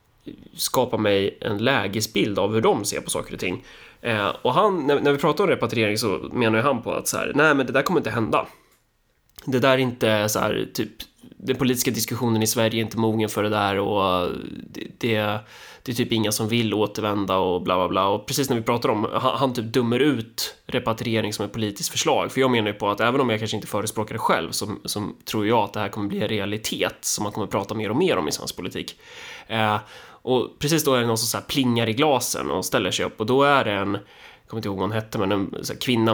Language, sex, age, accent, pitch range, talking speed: Swedish, male, 20-39, native, 105-120 Hz, 240 wpm